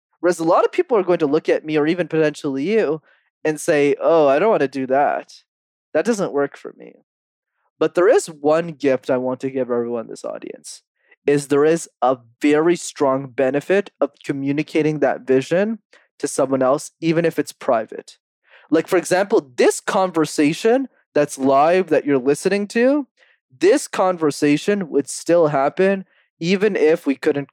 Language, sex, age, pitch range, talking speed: English, male, 20-39, 140-180 Hz, 175 wpm